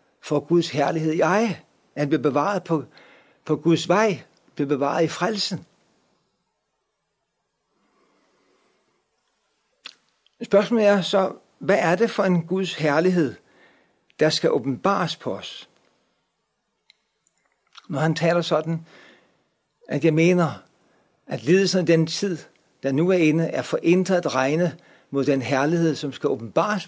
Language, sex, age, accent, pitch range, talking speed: Danish, male, 60-79, native, 150-185 Hz, 125 wpm